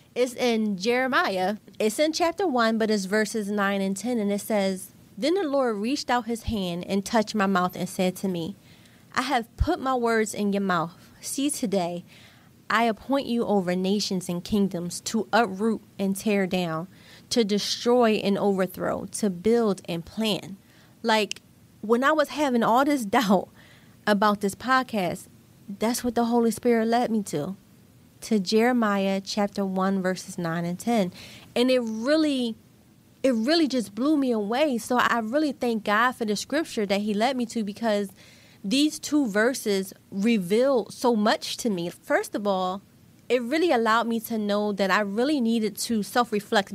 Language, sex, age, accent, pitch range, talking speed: English, female, 30-49, American, 200-245 Hz, 170 wpm